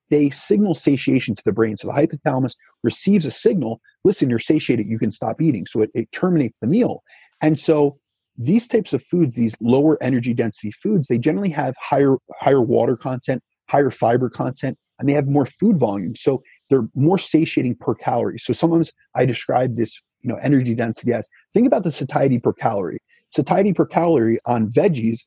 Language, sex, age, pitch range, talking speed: English, male, 30-49, 120-160 Hz, 190 wpm